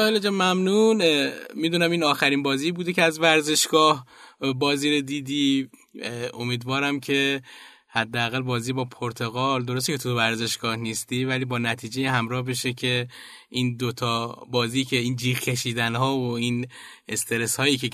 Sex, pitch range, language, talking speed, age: male, 120-155 Hz, Persian, 145 wpm, 10-29